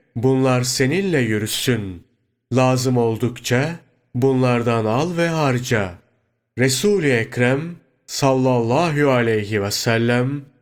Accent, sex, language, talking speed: native, male, Turkish, 85 wpm